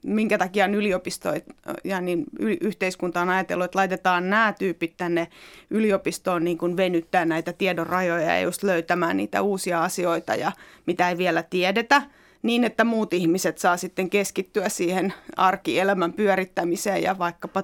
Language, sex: Finnish, female